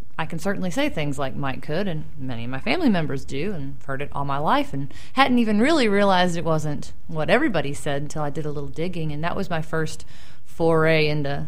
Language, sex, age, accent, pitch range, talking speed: English, female, 30-49, American, 135-160 Hz, 230 wpm